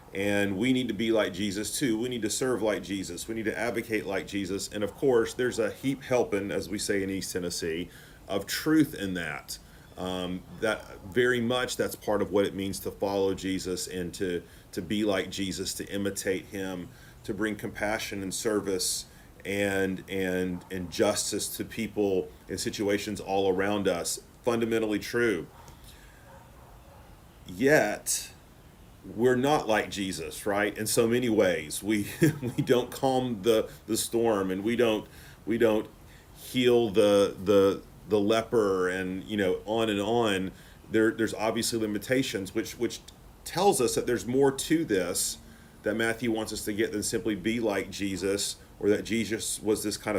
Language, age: English, 40-59